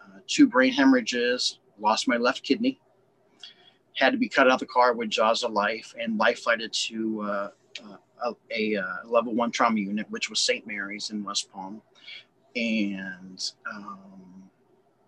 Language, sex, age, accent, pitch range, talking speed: English, male, 30-49, American, 105-145 Hz, 160 wpm